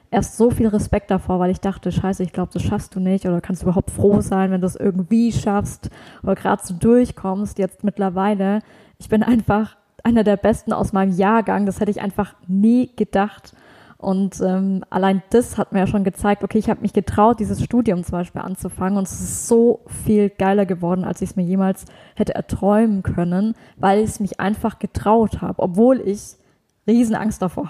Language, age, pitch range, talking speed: German, 20-39, 190-210 Hz, 200 wpm